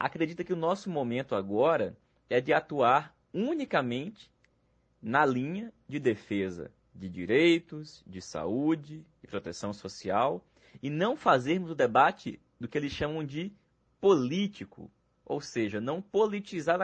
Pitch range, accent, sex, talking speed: 115-170 Hz, Brazilian, male, 130 wpm